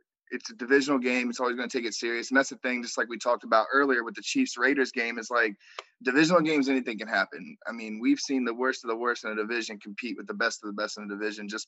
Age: 20-39